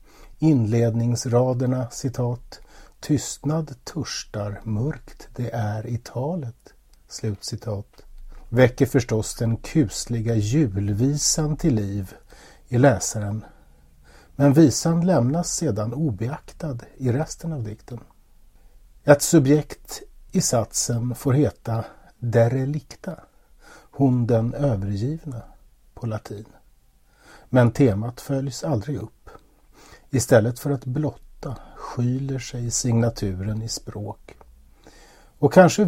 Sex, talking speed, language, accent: male, 90 wpm, Swedish, native